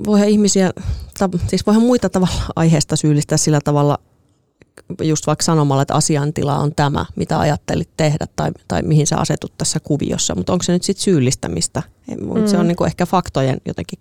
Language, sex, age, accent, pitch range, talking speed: Finnish, female, 30-49, native, 140-190 Hz, 165 wpm